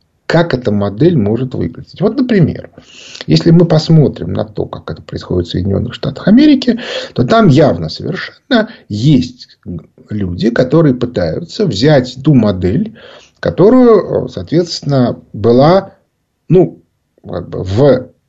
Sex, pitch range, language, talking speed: male, 115-185 Hz, Russian, 115 wpm